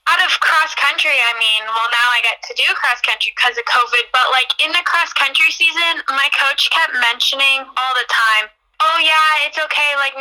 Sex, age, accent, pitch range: female, 10-29, American, 240-290 Hz